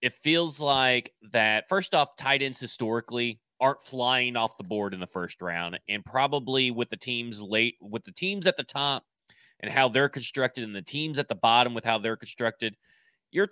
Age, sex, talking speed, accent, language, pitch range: 30-49, male, 200 wpm, American, English, 110-145 Hz